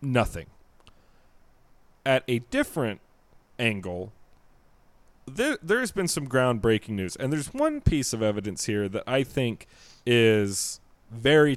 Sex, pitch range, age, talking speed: male, 100-130 Hz, 30-49, 125 wpm